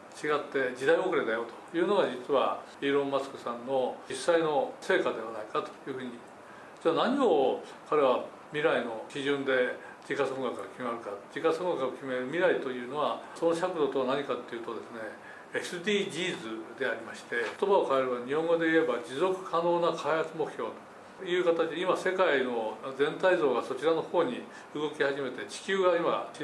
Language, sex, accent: Japanese, male, native